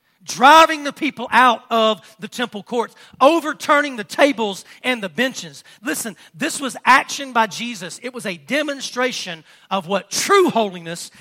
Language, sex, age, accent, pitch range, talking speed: English, male, 40-59, American, 190-250 Hz, 150 wpm